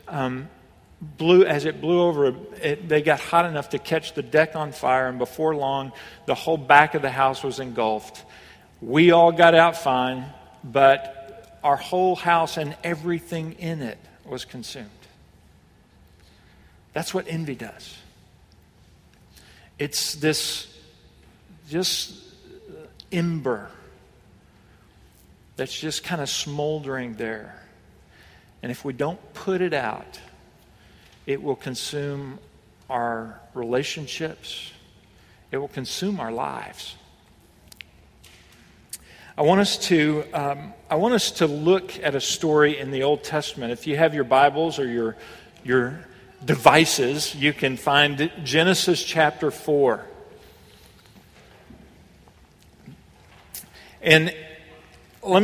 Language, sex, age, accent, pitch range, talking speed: English, male, 50-69, American, 120-165 Hz, 115 wpm